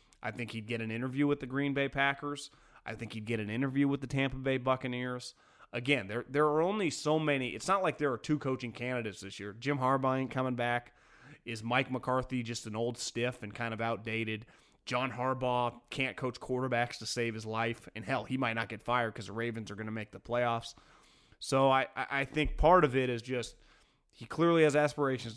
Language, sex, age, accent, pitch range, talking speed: English, male, 30-49, American, 110-135 Hz, 220 wpm